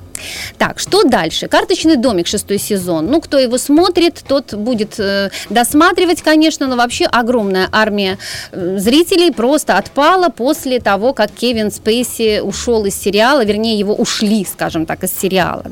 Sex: female